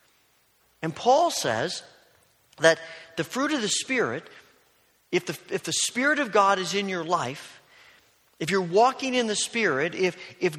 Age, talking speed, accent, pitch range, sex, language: 40-59, 160 wpm, American, 160-210 Hz, male, English